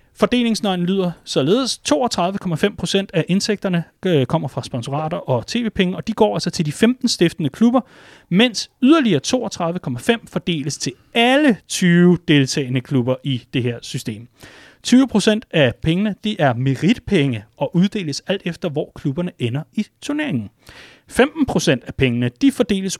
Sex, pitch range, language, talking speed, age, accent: male, 145-210 Hz, Danish, 140 wpm, 30-49, native